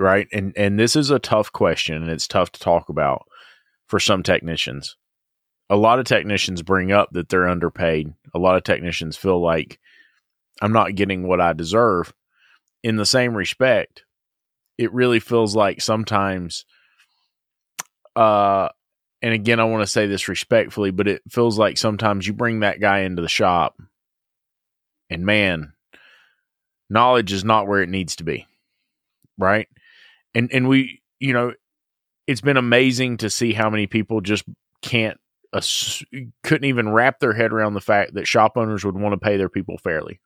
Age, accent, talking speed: 30-49, American, 165 wpm